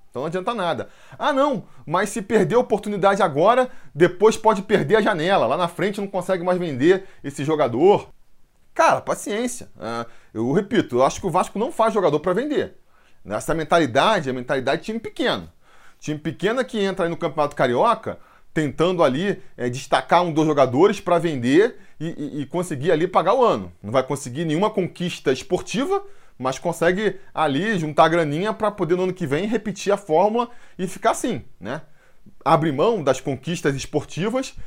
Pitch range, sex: 155-215 Hz, male